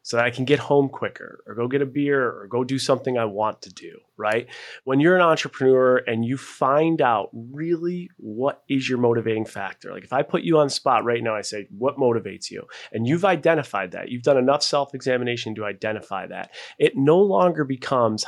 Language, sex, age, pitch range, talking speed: English, male, 30-49, 110-135 Hz, 210 wpm